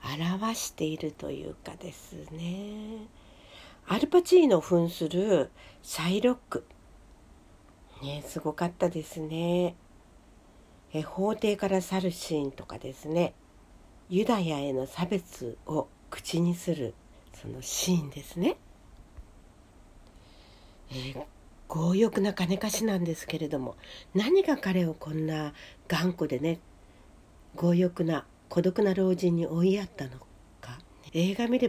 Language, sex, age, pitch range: Japanese, female, 60-79, 130-185 Hz